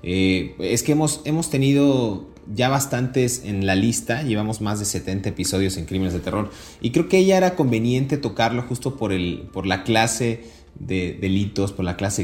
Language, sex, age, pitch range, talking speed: Spanish, male, 30-49, 95-120 Hz, 185 wpm